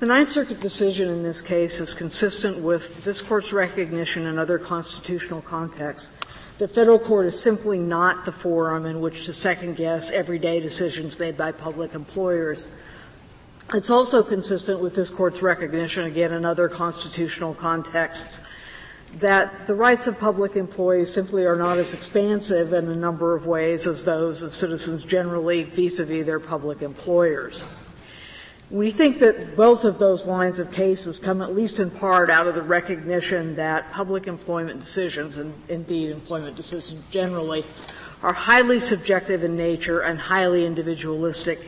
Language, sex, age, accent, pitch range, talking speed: English, female, 50-69, American, 165-195 Hz, 155 wpm